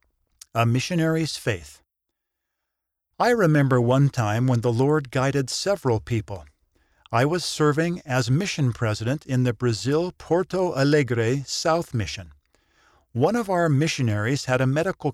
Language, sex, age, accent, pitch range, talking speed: English, male, 50-69, American, 110-155 Hz, 130 wpm